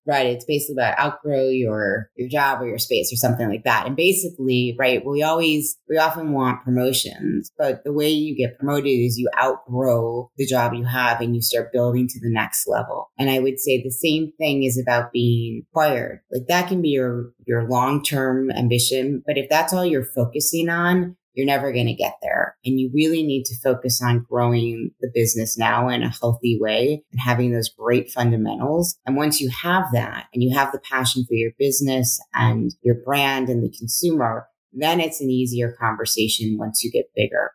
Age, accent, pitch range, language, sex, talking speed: 30-49, American, 120-145 Hz, English, female, 200 wpm